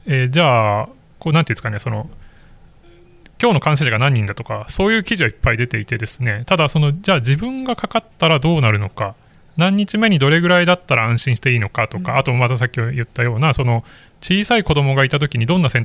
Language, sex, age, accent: Japanese, male, 20-39, native